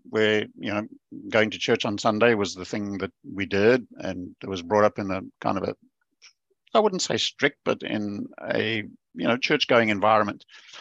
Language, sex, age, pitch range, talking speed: English, male, 60-79, 100-110 Hz, 200 wpm